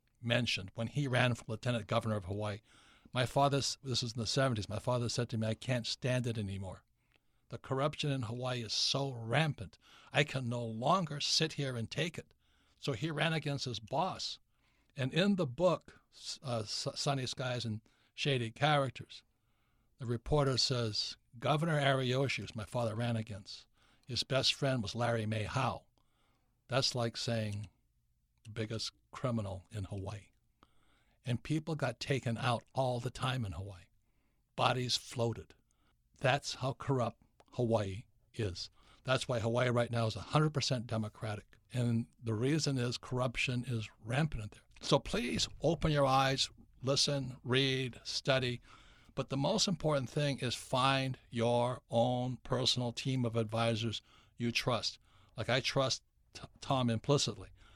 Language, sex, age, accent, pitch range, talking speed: English, male, 60-79, American, 110-135 Hz, 150 wpm